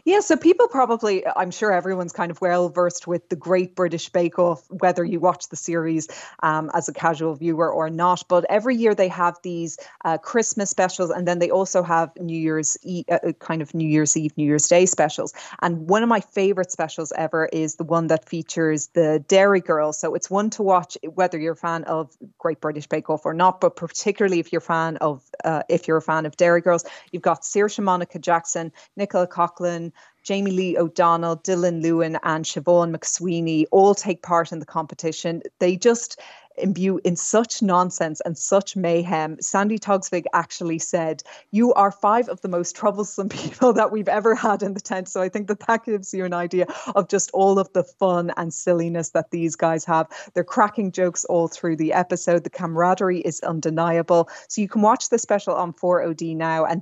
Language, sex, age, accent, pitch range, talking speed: English, female, 20-39, Irish, 160-190 Hz, 205 wpm